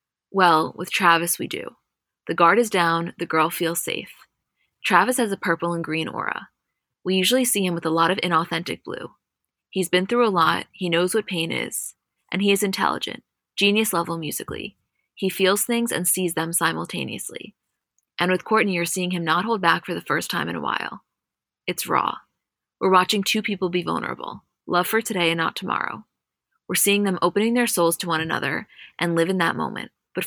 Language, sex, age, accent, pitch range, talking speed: English, female, 20-39, American, 170-200 Hz, 195 wpm